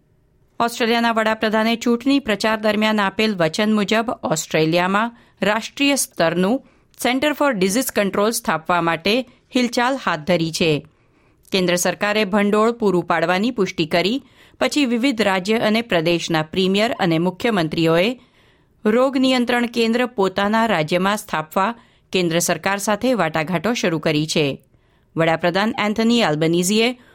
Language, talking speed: Gujarati, 110 wpm